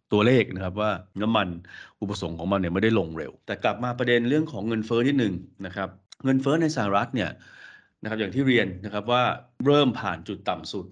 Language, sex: Thai, male